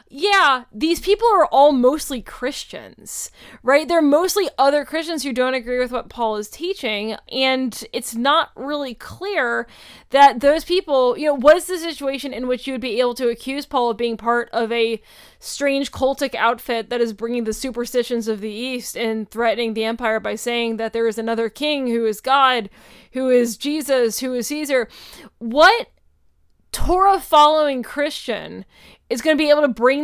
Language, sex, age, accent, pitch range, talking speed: English, female, 20-39, American, 240-300 Hz, 180 wpm